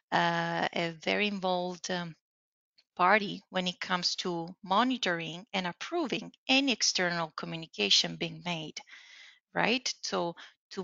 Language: English